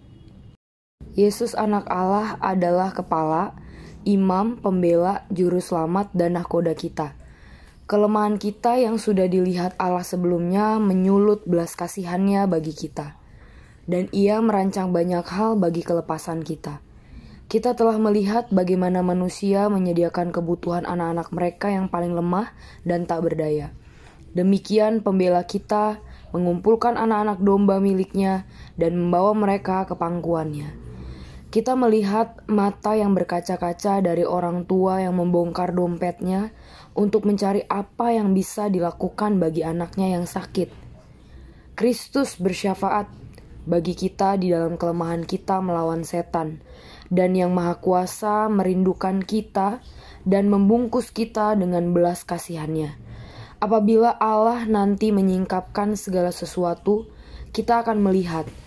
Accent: native